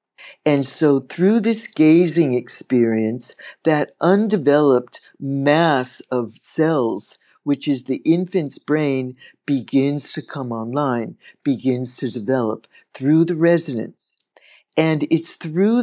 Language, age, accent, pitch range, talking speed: English, 60-79, American, 125-165 Hz, 110 wpm